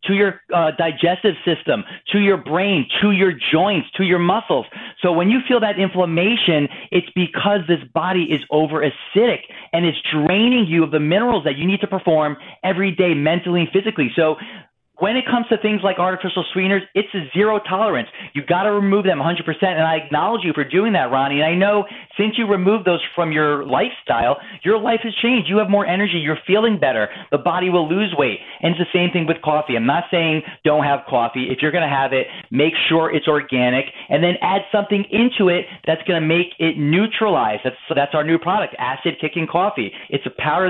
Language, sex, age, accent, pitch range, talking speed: English, male, 30-49, American, 150-195 Hz, 210 wpm